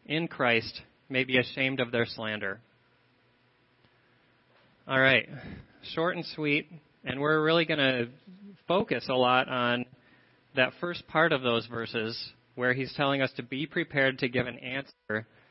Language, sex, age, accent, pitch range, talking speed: English, male, 30-49, American, 125-140 Hz, 150 wpm